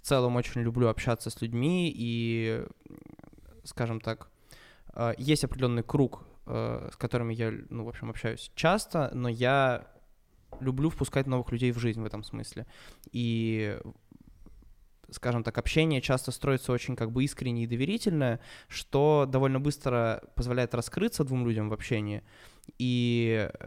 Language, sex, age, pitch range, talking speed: Russian, male, 20-39, 115-140 Hz, 135 wpm